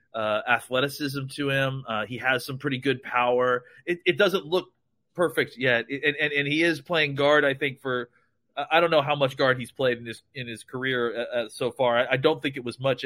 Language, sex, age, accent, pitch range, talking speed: English, male, 30-49, American, 130-150 Hz, 230 wpm